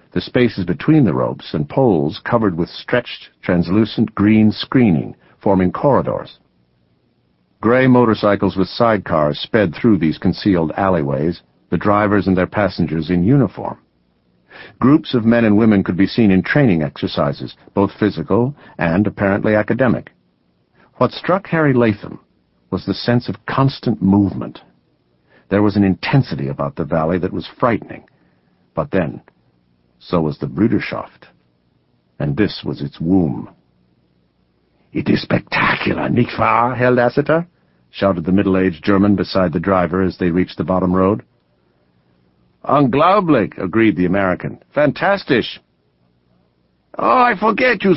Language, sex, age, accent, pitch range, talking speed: English, male, 50-69, American, 70-120 Hz, 135 wpm